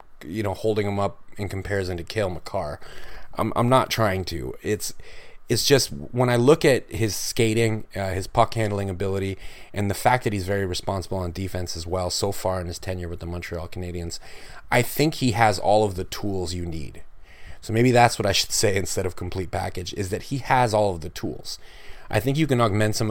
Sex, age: male, 30-49